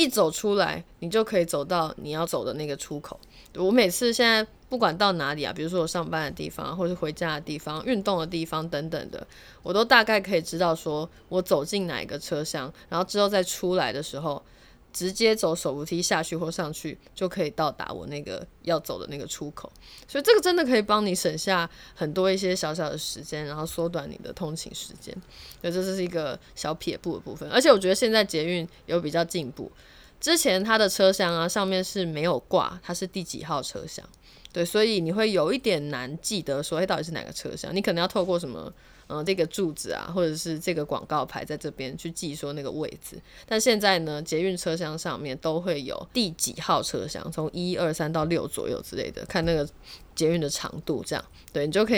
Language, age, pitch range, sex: Chinese, 20-39, 155-190 Hz, female